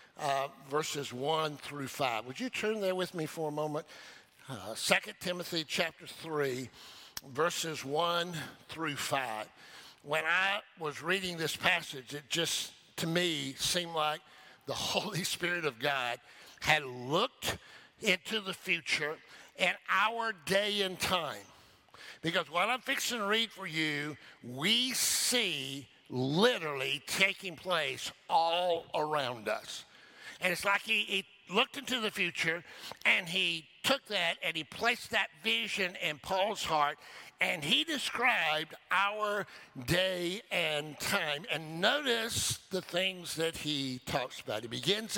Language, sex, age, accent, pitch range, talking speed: English, male, 60-79, American, 150-200 Hz, 140 wpm